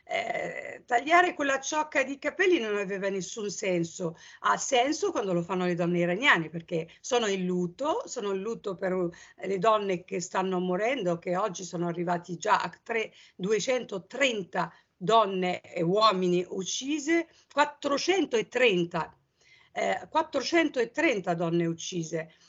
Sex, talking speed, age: female, 130 wpm, 50-69